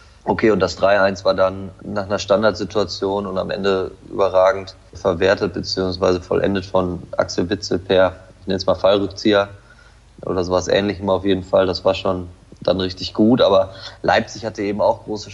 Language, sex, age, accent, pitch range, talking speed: German, male, 20-39, German, 95-100 Hz, 170 wpm